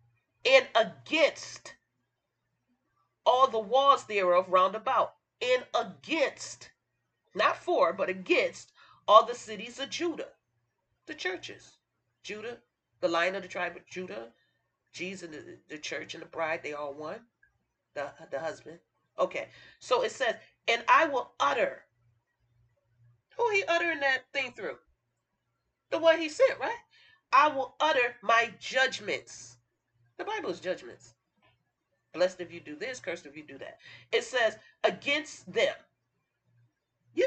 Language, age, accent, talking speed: English, 40-59, American, 140 wpm